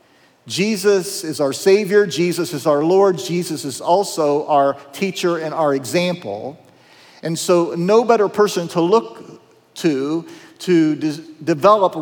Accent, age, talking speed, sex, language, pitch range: American, 50-69, 130 wpm, male, English, 150-190 Hz